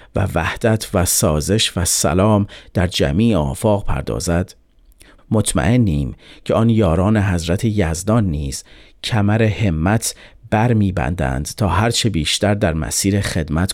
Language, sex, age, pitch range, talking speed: Persian, male, 40-59, 85-110 Hz, 120 wpm